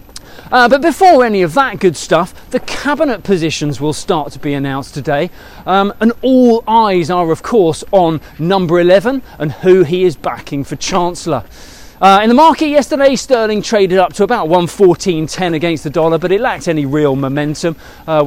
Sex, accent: male, British